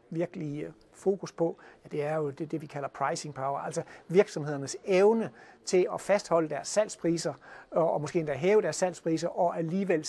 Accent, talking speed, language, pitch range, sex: native, 175 wpm, Danish, 150-190 Hz, male